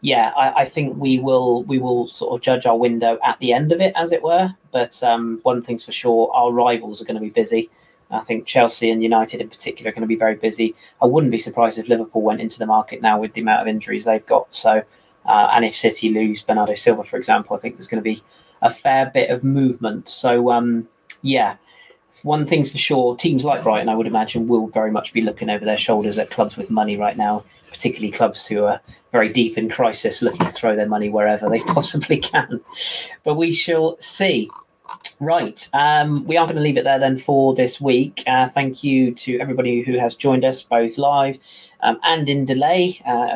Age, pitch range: 20-39, 115-135 Hz